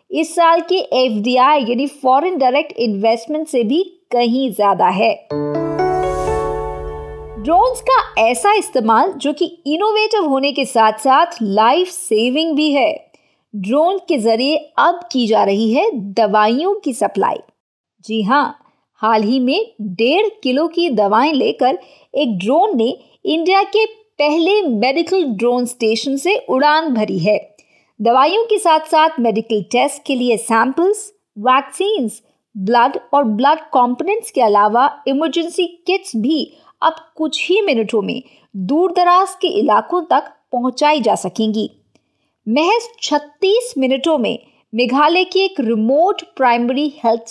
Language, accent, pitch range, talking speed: Hindi, native, 225-340 Hz, 130 wpm